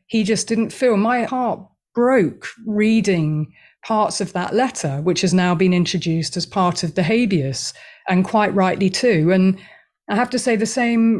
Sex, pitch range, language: female, 175-220 Hz, English